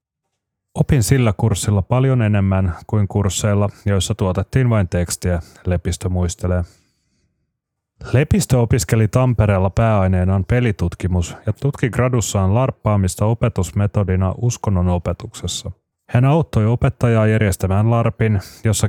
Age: 30-49